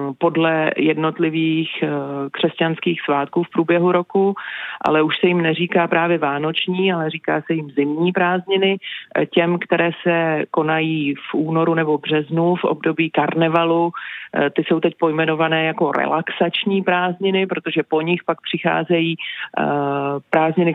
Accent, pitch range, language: native, 160-185 Hz, Czech